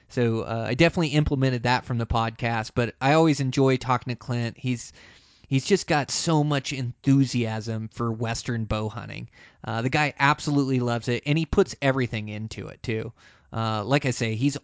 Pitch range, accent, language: 115-135 Hz, American, English